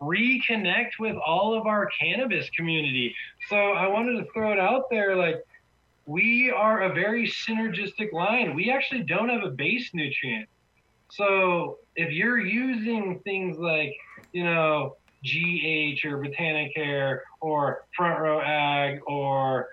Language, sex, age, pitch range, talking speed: English, male, 20-39, 145-200 Hz, 135 wpm